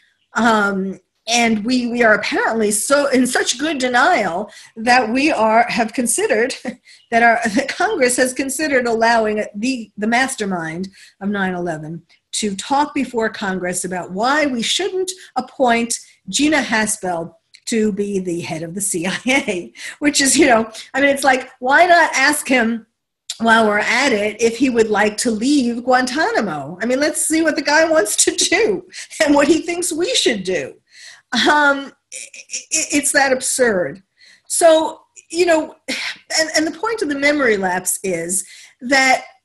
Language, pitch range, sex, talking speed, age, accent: English, 195-285 Hz, female, 155 wpm, 50-69, American